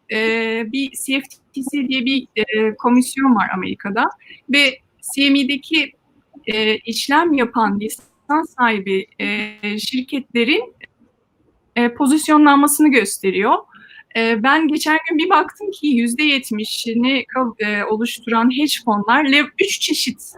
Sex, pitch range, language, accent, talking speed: female, 230-290 Hz, Turkish, native, 100 wpm